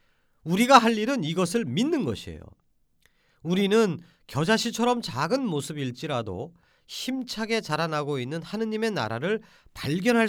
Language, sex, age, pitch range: Korean, male, 40-59, 120-200 Hz